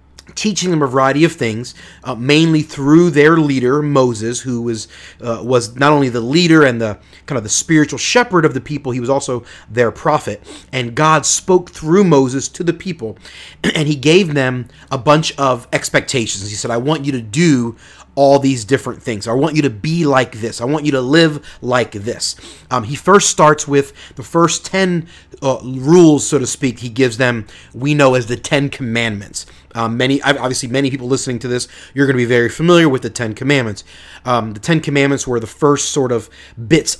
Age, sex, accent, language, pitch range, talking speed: 30-49, male, American, English, 120-150 Hz, 205 wpm